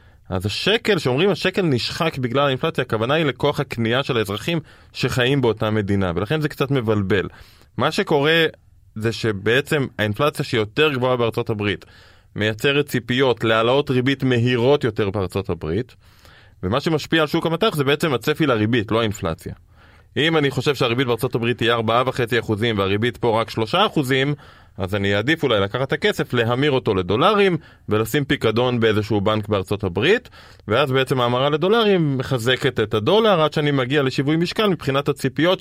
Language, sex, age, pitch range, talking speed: Hebrew, male, 20-39, 105-150 Hz, 150 wpm